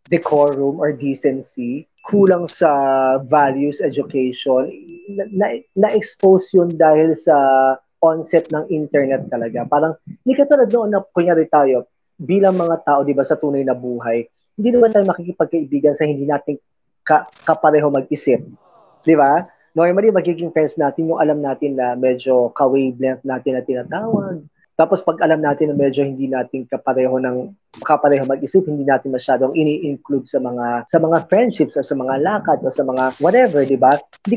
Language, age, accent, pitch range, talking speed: Filipino, 20-39, native, 135-170 Hz, 160 wpm